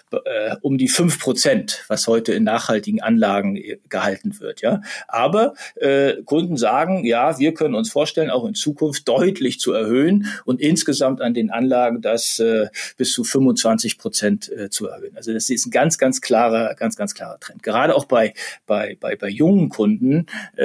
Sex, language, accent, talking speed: male, German, German, 175 wpm